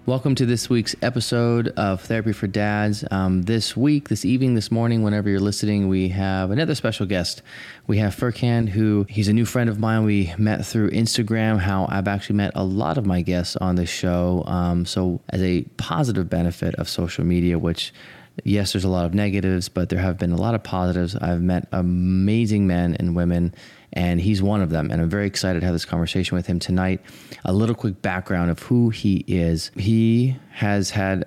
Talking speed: 205 wpm